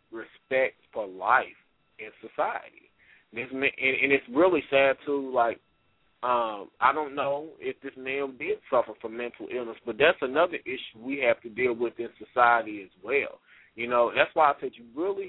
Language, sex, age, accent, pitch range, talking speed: English, male, 30-49, American, 120-140 Hz, 185 wpm